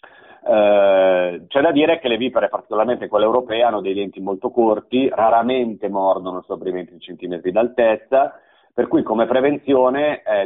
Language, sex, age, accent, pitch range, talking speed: Italian, male, 30-49, native, 95-120 Hz, 155 wpm